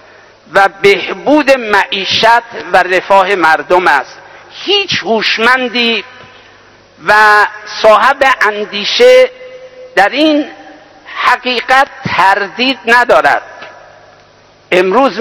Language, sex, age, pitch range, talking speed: English, male, 60-79, 205-265 Hz, 70 wpm